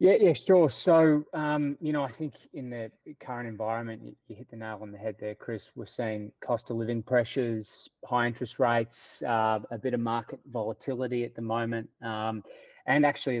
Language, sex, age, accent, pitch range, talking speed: English, male, 30-49, Australian, 110-135 Hz, 195 wpm